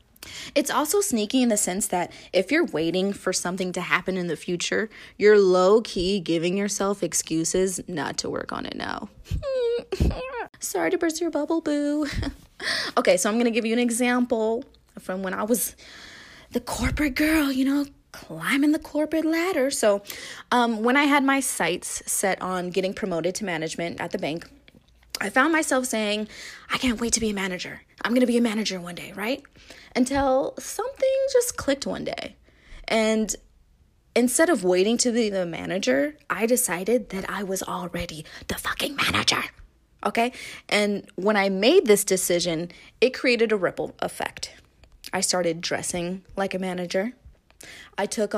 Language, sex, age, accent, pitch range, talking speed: English, female, 20-39, American, 185-260 Hz, 165 wpm